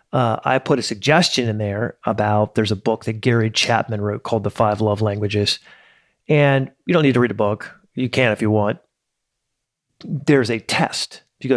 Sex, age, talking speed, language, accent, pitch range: male, 40-59, 200 wpm, English, American, 110-140 Hz